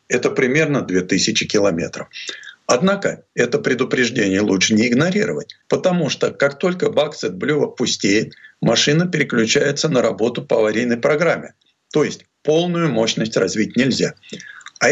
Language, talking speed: Russian, 125 wpm